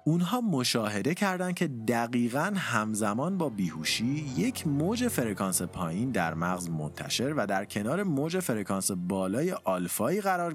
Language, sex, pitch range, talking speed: Persian, male, 95-150 Hz, 130 wpm